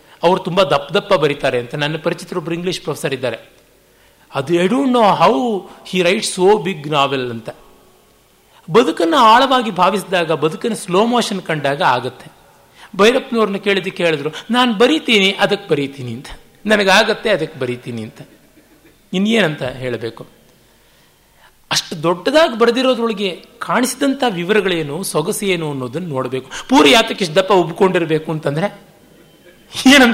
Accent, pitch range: native, 150-200 Hz